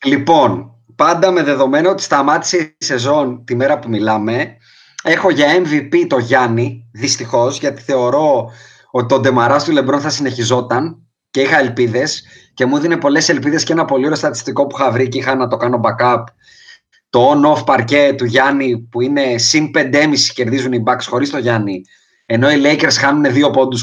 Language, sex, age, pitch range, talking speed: Greek, male, 30-49, 125-180 Hz, 175 wpm